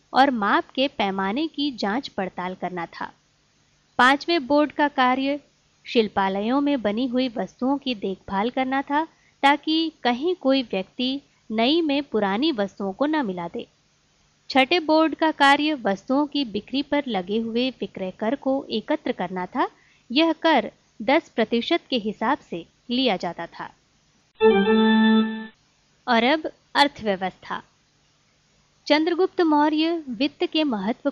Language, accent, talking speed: Hindi, native, 130 wpm